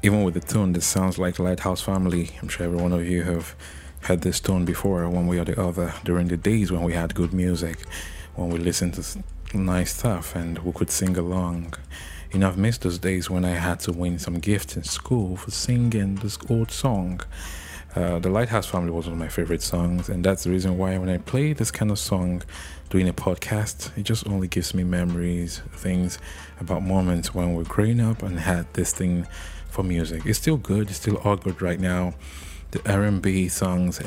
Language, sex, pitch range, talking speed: English, male, 85-95 Hz, 215 wpm